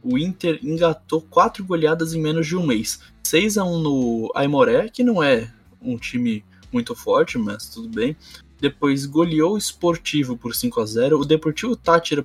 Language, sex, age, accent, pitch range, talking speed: Portuguese, male, 10-29, Brazilian, 125-165 Hz, 155 wpm